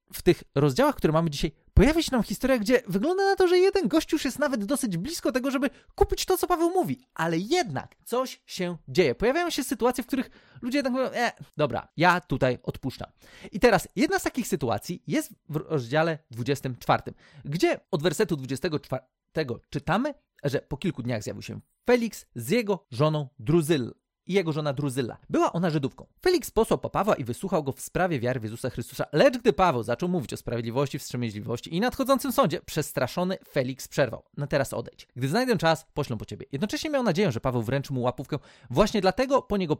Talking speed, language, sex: 190 wpm, Polish, male